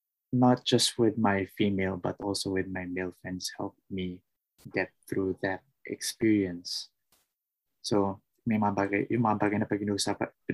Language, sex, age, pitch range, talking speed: English, male, 20-39, 95-120 Hz, 150 wpm